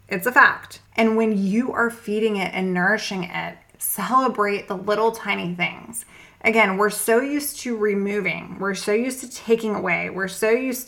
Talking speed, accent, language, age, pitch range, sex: 175 wpm, American, English, 20-39, 195-235 Hz, female